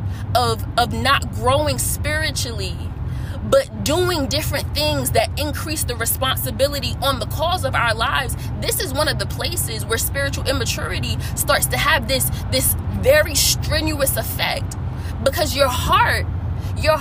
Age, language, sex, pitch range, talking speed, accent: 20-39, English, female, 95-115 Hz, 140 wpm, American